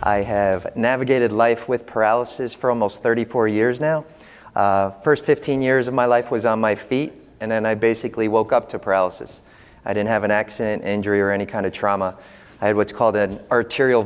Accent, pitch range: American, 105-125 Hz